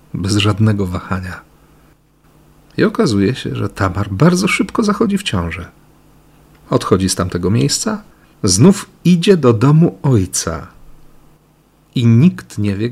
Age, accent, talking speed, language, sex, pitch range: 40-59, native, 120 wpm, Polish, male, 95-135 Hz